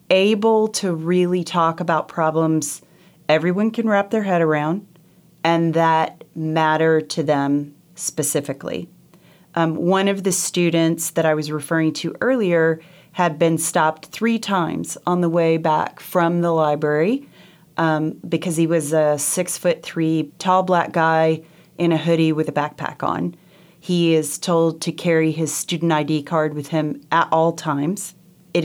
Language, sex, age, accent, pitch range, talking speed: English, female, 30-49, American, 160-180 Hz, 155 wpm